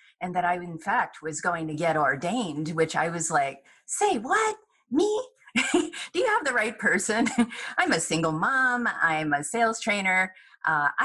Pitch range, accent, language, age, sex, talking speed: 175-240 Hz, American, English, 40-59, female, 175 wpm